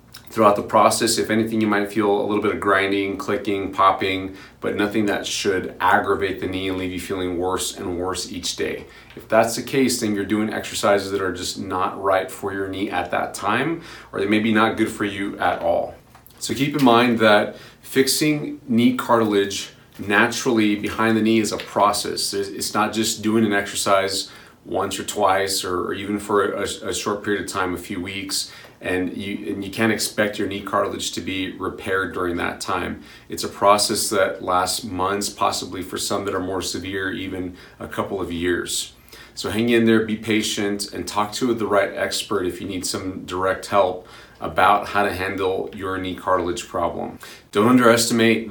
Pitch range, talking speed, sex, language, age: 95-110 Hz, 195 wpm, male, English, 30-49